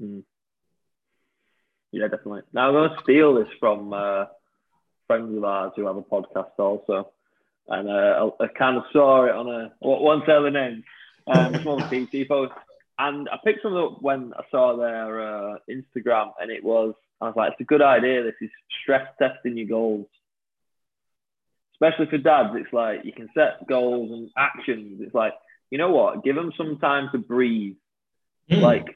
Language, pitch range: English, 110-140 Hz